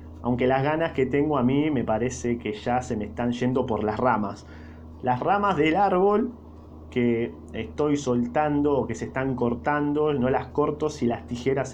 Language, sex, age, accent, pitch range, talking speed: Spanish, male, 20-39, Argentinian, 110-140 Hz, 185 wpm